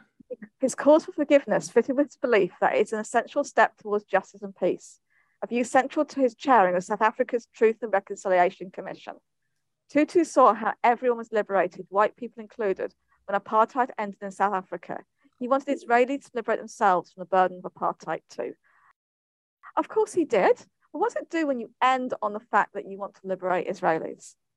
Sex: female